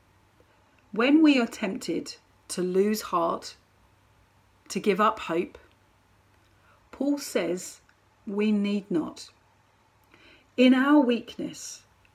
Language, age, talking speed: English, 40-59, 95 wpm